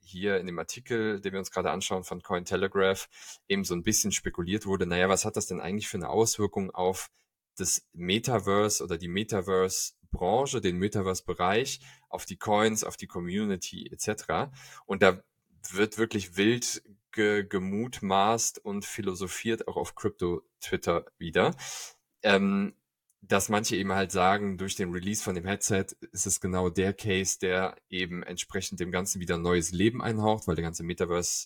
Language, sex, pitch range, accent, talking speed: German, male, 90-105 Hz, German, 160 wpm